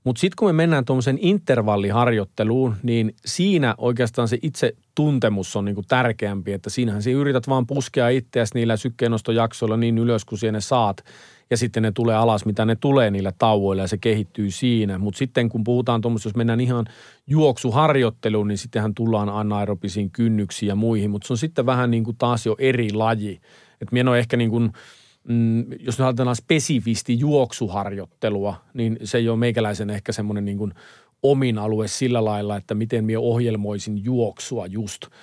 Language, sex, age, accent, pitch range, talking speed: Finnish, male, 40-59, native, 110-125 Hz, 165 wpm